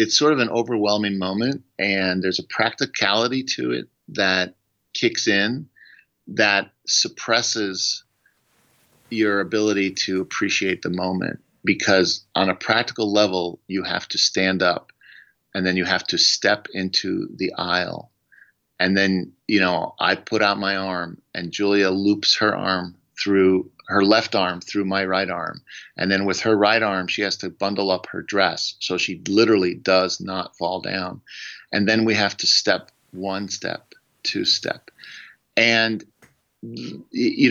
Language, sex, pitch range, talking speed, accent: English, male, 95-110 Hz, 155 wpm, American